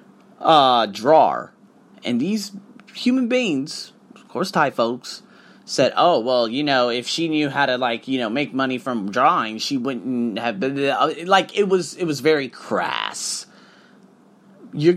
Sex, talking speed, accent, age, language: male, 155 wpm, American, 30-49, English